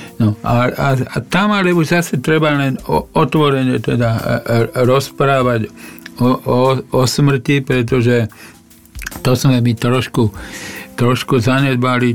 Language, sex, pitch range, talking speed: Slovak, male, 110-130 Hz, 125 wpm